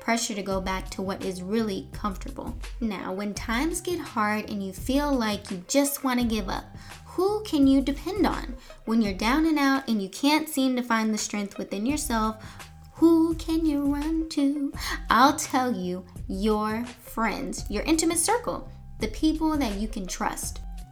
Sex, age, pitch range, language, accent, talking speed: female, 10-29, 200-285 Hz, English, American, 180 wpm